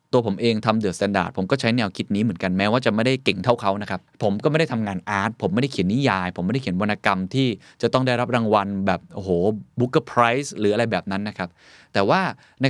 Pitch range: 105-150 Hz